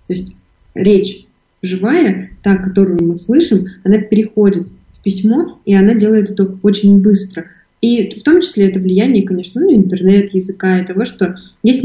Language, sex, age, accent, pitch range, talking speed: Russian, female, 20-39, native, 185-205 Hz, 160 wpm